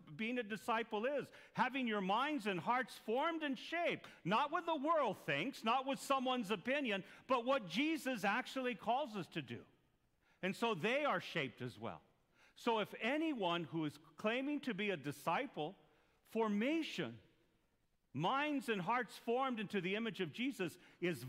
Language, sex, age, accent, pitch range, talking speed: English, male, 50-69, American, 170-240 Hz, 160 wpm